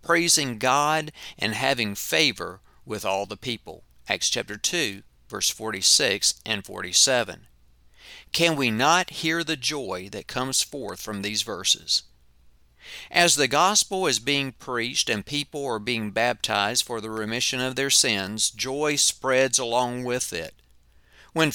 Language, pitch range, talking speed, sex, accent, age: English, 110-155 Hz, 140 wpm, male, American, 40-59